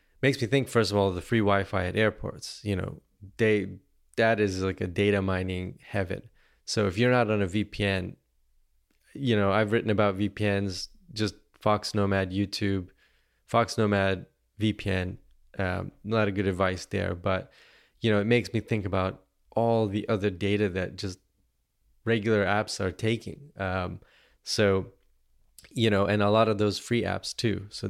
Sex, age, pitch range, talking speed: male, 20-39, 95-110 Hz, 170 wpm